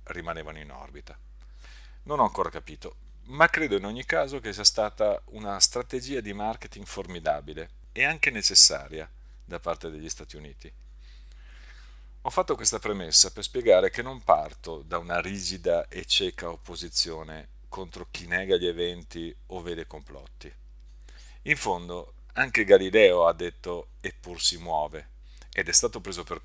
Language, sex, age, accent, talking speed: Italian, male, 50-69, native, 150 wpm